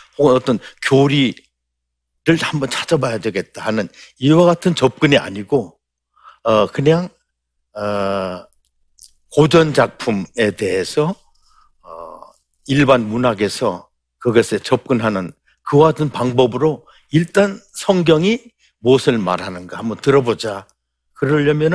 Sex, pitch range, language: male, 100-155 Hz, Korean